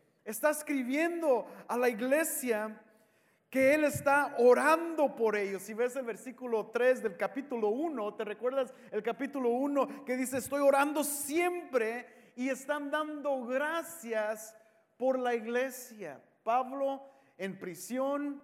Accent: Mexican